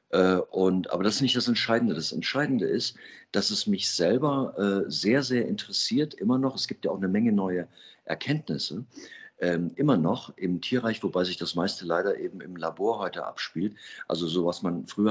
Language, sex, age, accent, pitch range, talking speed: German, male, 50-69, German, 90-110 Hz, 180 wpm